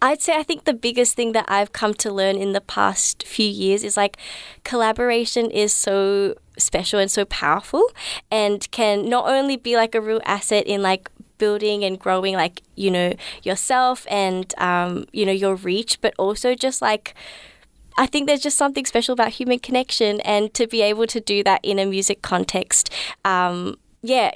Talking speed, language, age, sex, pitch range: 185 wpm, English, 20-39, female, 195-235 Hz